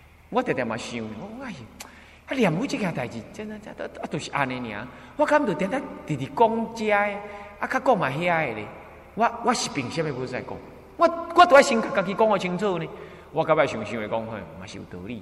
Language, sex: Chinese, male